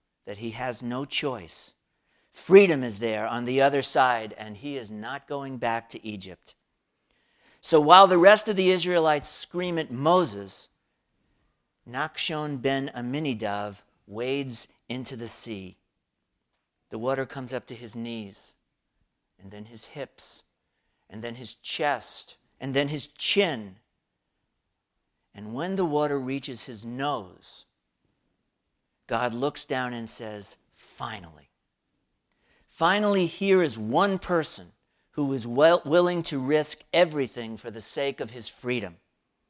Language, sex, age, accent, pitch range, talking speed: English, male, 50-69, American, 115-150 Hz, 130 wpm